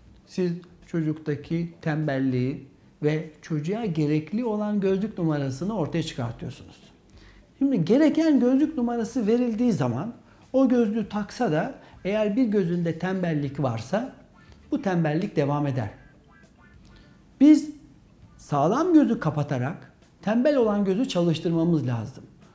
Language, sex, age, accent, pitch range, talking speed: Turkish, male, 60-79, native, 155-240 Hz, 105 wpm